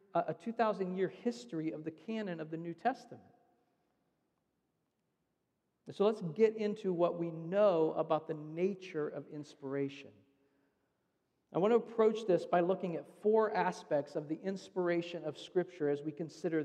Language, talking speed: English, 145 wpm